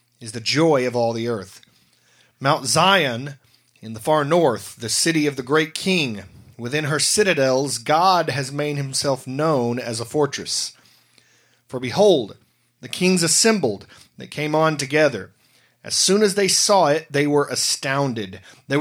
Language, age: English, 30-49